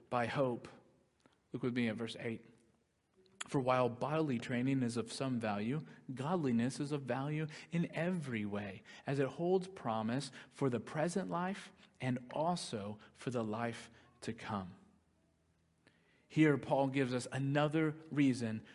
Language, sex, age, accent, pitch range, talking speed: English, male, 40-59, American, 120-170 Hz, 140 wpm